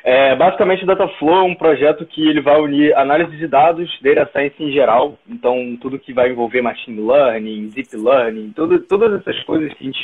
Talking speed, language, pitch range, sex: 185 wpm, Portuguese, 130-190 Hz, male